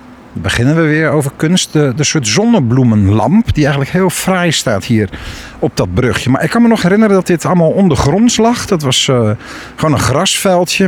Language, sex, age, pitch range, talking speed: Dutch, male, 50-69, 105-160 Hz, 200 wpm